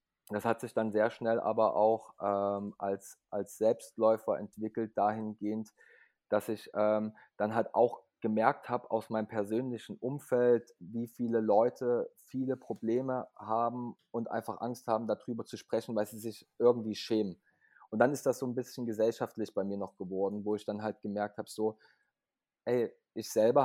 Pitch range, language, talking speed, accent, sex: 110-125 Hz, German, 165 wpm, German, male